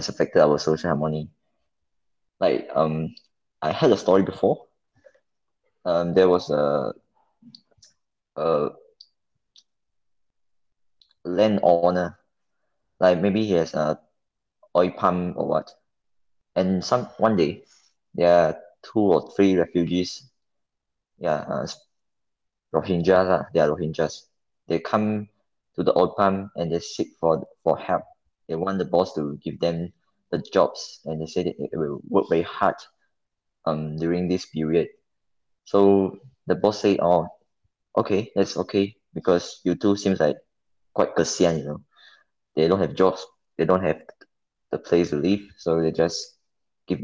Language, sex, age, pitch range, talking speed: English, male, 20-39, 80-100 Hz, 140 wpm